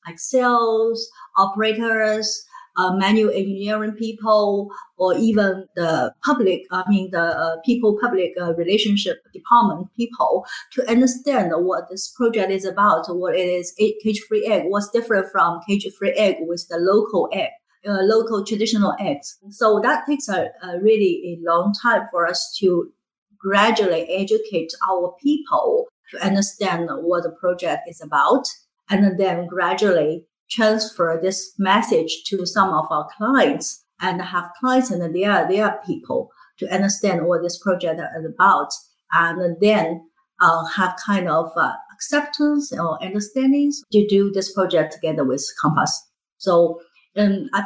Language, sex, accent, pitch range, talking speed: English, female, Chinese, 175-225 Hz, 145 wpm